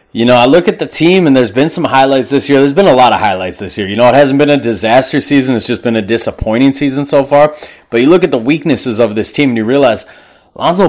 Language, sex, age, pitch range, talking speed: English, male, 30-49, 115-140 Hz, 280 wpm